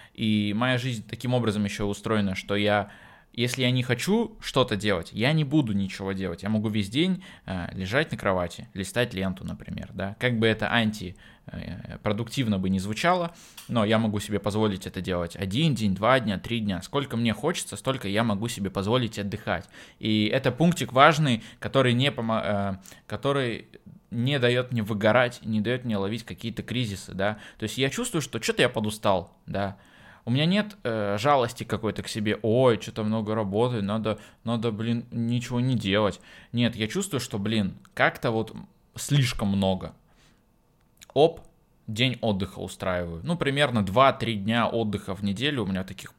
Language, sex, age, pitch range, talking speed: Russian, male, 20-39, 100-125 Hz, 165 wpm